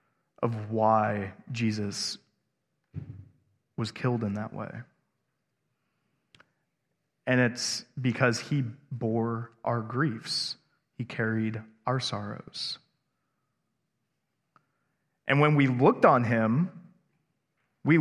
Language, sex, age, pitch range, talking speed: English, male, 20-39, 130-180 Hz, 85 wpm